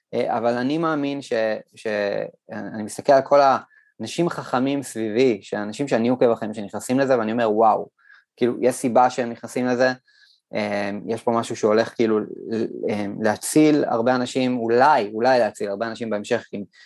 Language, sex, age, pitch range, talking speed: Hebrew, male, 20-39, 105-125 Hz, 145 wpm